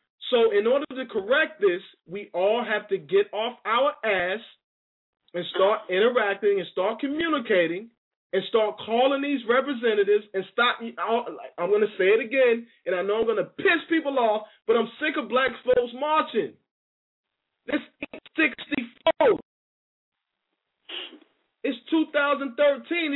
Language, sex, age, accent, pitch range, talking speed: English, male, 20-39, American, 225-290 Hz, 135 wpm